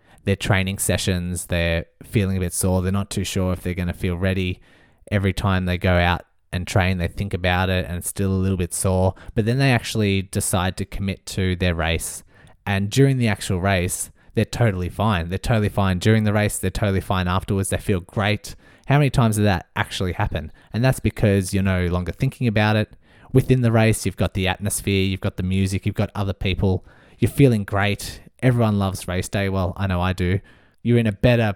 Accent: Australian